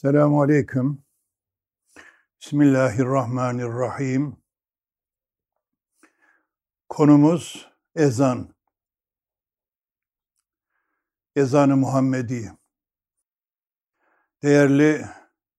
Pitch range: 125-155 Hz